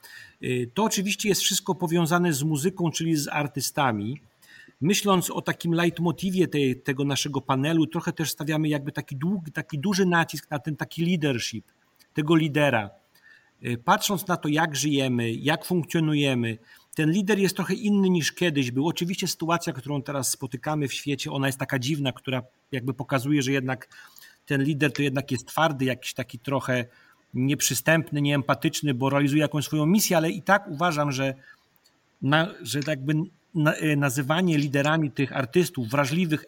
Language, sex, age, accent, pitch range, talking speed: Polish, male, 40-59, native, 140-175 Hz, 150 wpm